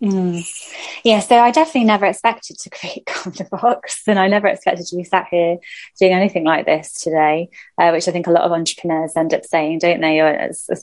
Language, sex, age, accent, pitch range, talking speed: English, female, 20-39, British, 170-190 Hz, 220 wpm